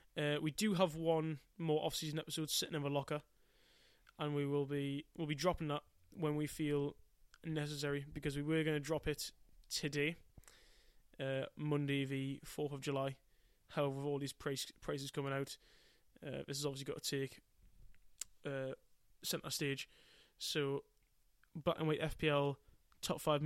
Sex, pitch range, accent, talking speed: male, 140-155 Hz, British, 160 wpm